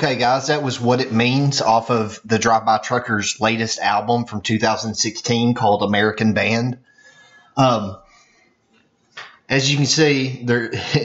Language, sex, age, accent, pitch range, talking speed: English, male, 30-49, American, 100-120 Hz, 130 wpm